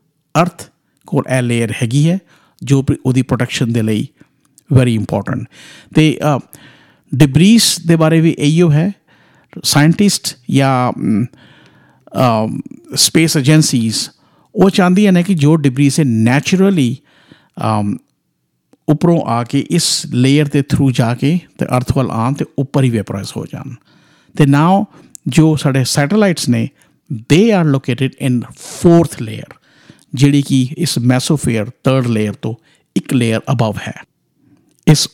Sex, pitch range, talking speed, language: male, 125-160 Hz, 120 wpm, Punjabi